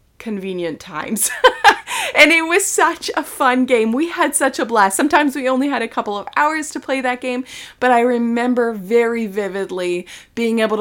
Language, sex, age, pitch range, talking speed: English, female, 20-39, 195-250 Hz, 185 wpm